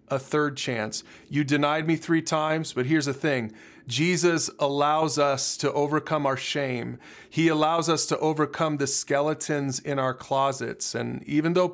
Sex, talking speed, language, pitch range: male, 165 wpm, English, 135-165 Hz